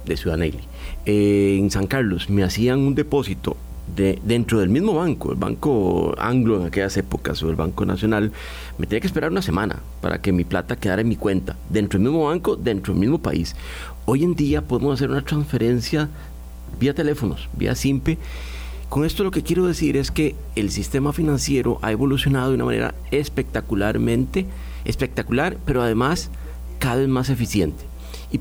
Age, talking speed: 40-59, 175 wpm